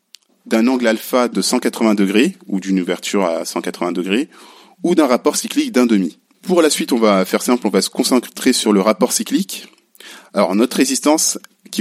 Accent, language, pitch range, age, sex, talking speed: French, French, 100-140 Hz, 20-39, male, 190 wpm